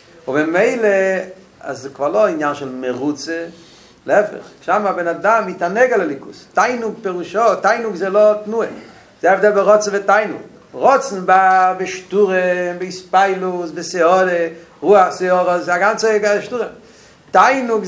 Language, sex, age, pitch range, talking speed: Hebrew, male, 50-69, 180-225 Hz, 130 wpm